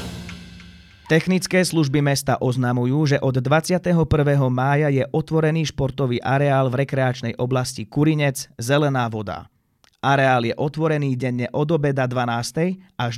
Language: Slovak